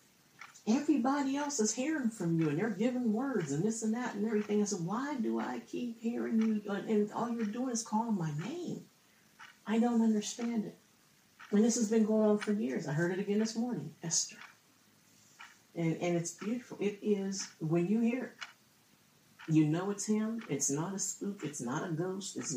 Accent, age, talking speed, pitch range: American, 50-69, 195 wpm, 155-215 Hz